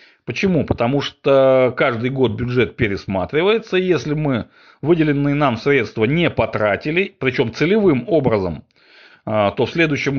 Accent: native